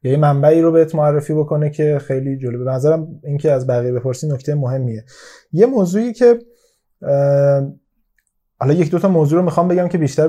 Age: 20-39